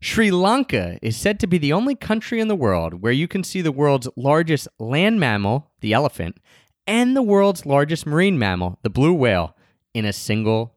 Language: English